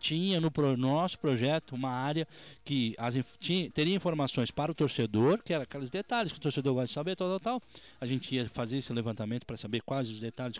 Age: 20-39